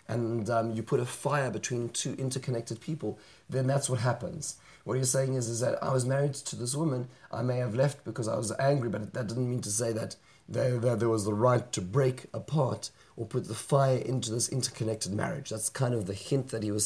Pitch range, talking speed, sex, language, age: 110-130 Hz, 235 wpm, male, English, 30-49